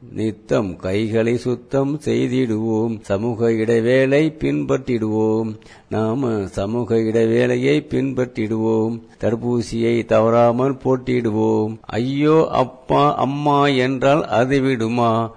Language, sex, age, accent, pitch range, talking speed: Tamil, male, 50-69, native, 110-130 Hz, 80 wpm